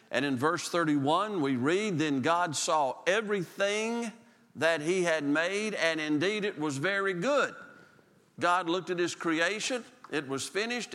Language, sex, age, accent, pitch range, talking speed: English, male, 50-69, American, 155-220 Hz, 155 wpm